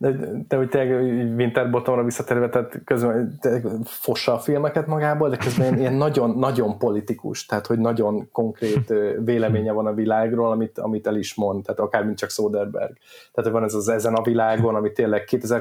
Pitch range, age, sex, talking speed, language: 110-120 Hz, 20-39, male, 175 wpm, Hungarian